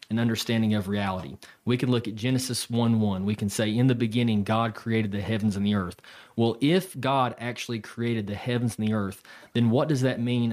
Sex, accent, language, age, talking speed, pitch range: male, American, English, 30-49, 220 wpm, 110-135 Hz